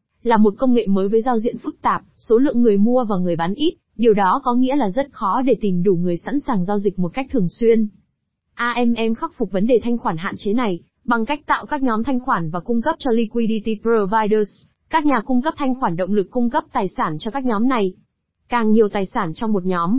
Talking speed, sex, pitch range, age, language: 250 wpm, female, 200-255 Hz, 20-39, Vietnamese